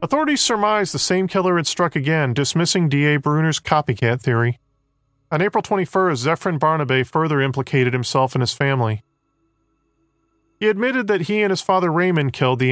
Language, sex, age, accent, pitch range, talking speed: English, male, 40-59, American, 135-185 Hz, 160 wpm